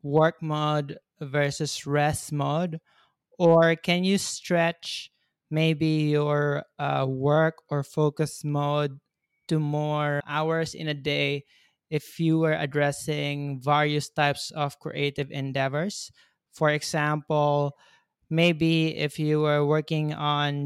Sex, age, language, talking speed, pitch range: male, 20-39, English, 115 wpm, 145-155 Hz